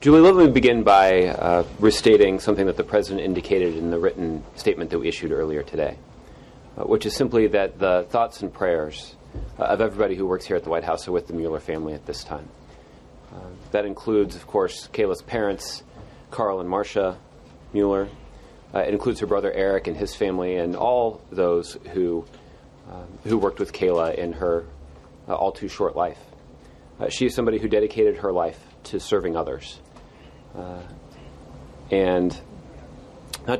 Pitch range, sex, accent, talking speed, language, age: 85-115 Hz, male, American, 170 wpm, English, 30-49